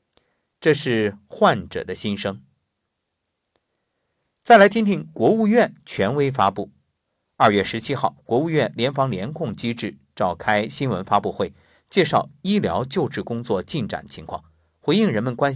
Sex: male